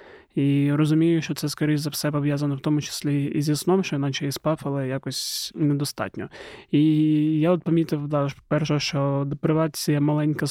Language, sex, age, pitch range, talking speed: Ukrainian, male, 20-39, 145-165 Hz, 170 wpm